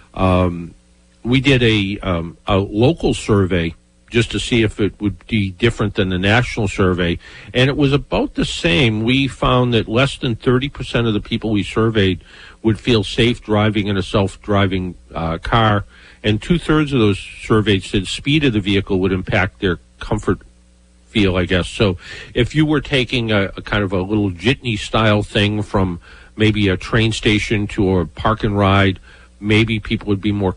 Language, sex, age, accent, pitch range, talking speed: English, male, 50-69, American, 95-115 Hz, 185 wpm